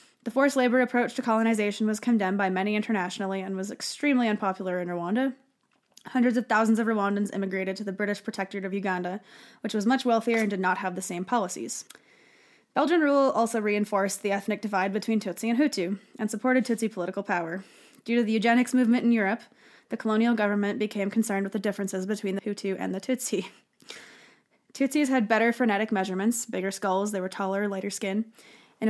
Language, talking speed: English, 185 wpm